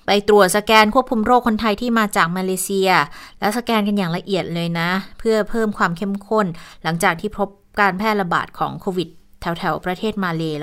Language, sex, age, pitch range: Thai, female, 20-39, 165-205 Hz